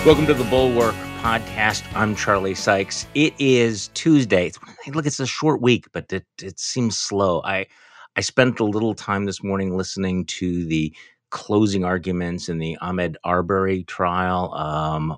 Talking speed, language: 160 wpm, English